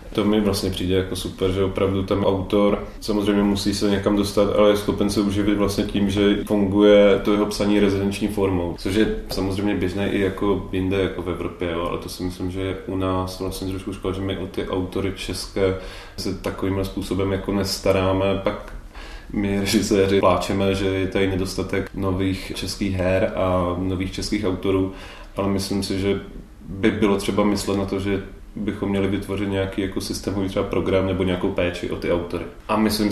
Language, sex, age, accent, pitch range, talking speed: Czech, male, 20-39, native, 95-100 Hz, 185 wpm